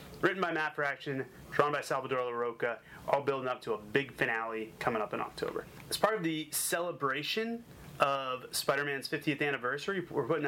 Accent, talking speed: American, 180 wpm